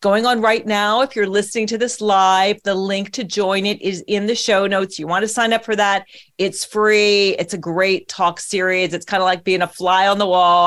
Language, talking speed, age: English, 245 wpm, 40-59